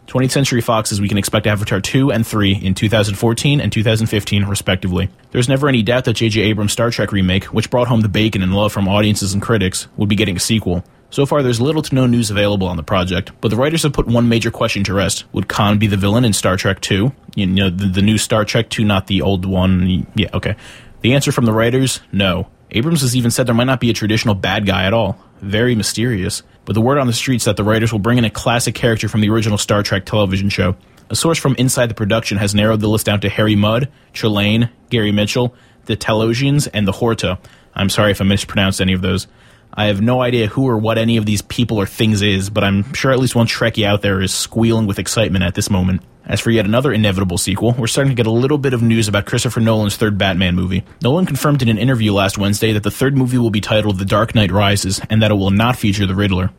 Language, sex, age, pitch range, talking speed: English, male, 20-39, 100-120 Hz, 250 wpm